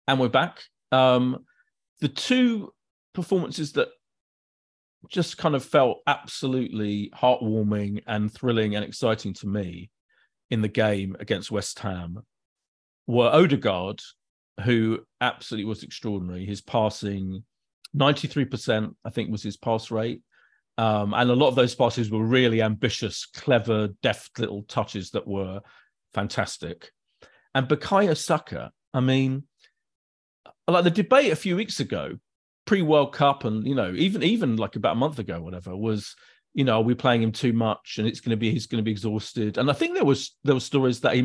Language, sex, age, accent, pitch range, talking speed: English, male, 40-59, British, 105-135 Hz, 165 wpm